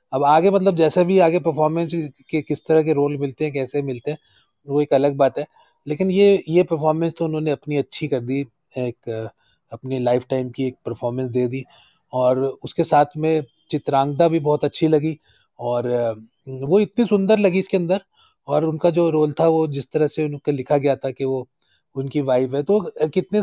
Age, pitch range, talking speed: 30-49, 140-170 Hz, 195 wpm